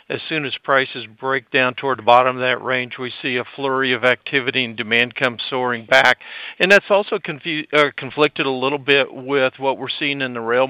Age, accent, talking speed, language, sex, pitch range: 50-69, American, 205 wpm, English, male, 125-140 Hz